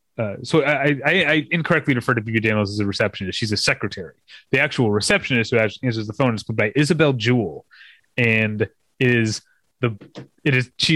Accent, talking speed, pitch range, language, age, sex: American, 190 wpm, 115-140 Hz, English, 30-49, male